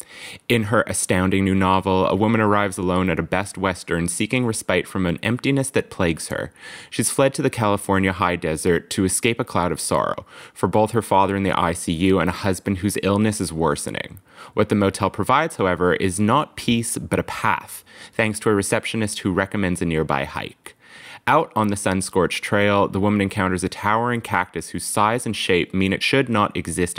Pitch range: 90-110 Hz